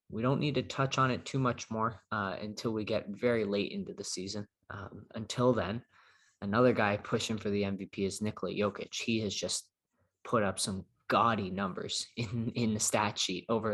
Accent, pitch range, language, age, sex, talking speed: American, 100-120 Hz, English, 20-39, male, 195 wpm